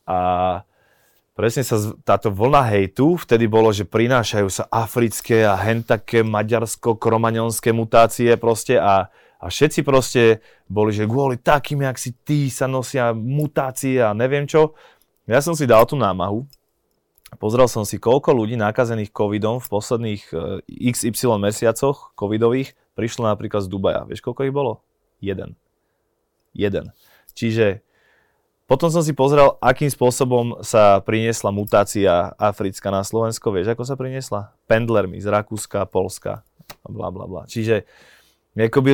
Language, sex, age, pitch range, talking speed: Slovak, male, 20-39, 105-130 Hz, 140 wpm